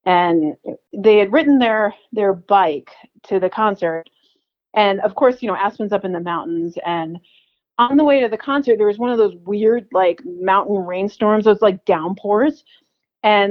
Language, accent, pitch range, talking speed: English, American, 175-230 Hz, 180 wpm